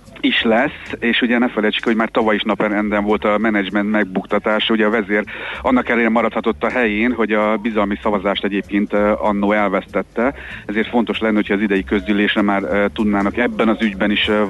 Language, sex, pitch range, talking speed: Hungarian, male, 100-115 Hz, 180 wpm